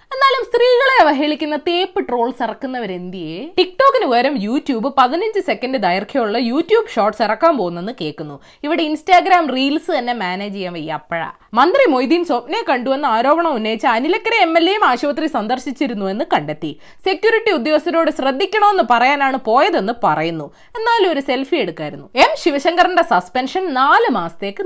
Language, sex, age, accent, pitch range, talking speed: Malayalam, female, 20-39, native, 215-335 Hz, 125 wpm